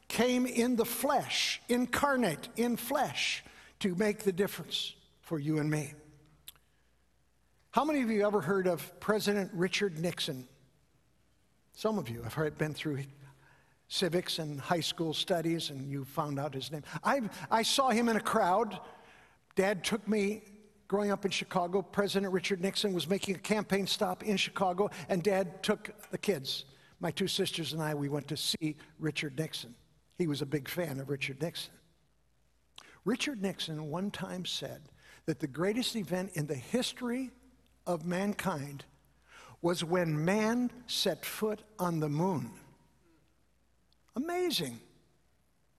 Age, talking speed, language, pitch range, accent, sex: 60-79, 150 wpm, English, 155-205 Hz, American, male